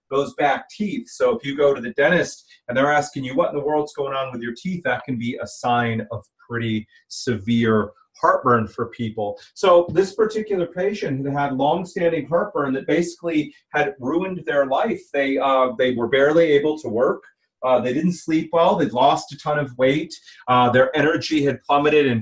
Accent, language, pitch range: American, English, 130-170 Hz